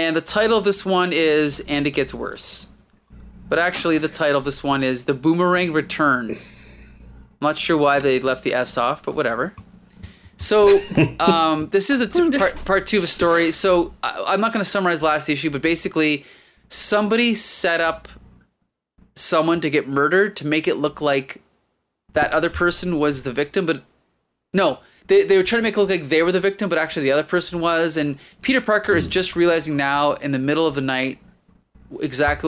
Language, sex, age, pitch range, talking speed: English, male, 20-39, 140-180 Hz, 195 wpm